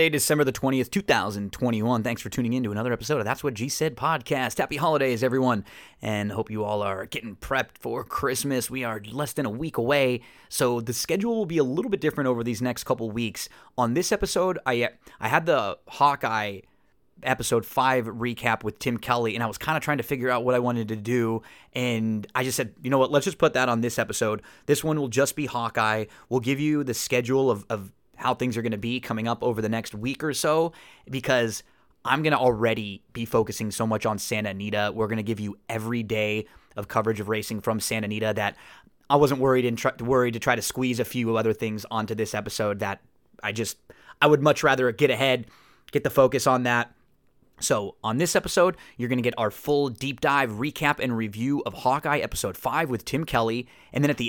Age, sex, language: 20-39, male, English